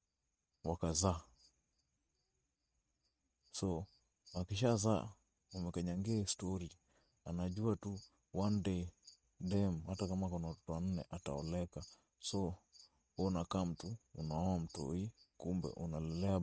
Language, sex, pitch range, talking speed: English, male, 80-95 Hz, 90 wpm